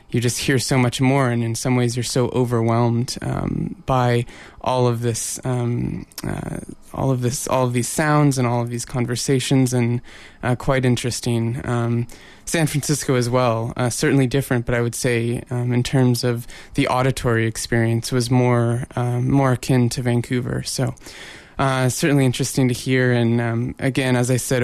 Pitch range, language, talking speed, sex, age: 120-130 Hz, English, 185 wpm, male, 20-39